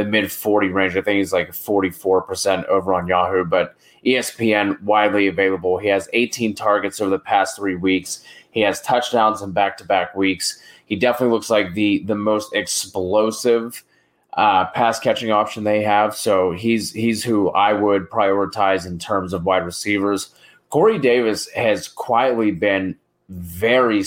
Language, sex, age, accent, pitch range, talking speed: English, male, 30-49, American, 95-110 Hz, 155 wpm